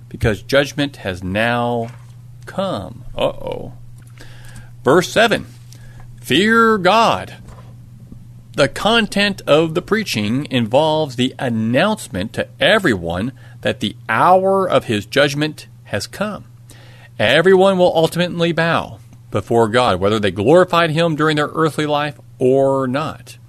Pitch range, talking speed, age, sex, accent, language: 115-150 Hz, 115 wpm, 40-59, male, American, English